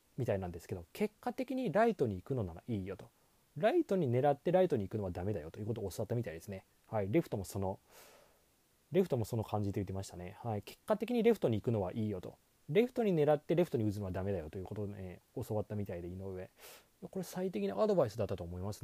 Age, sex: 20-39, male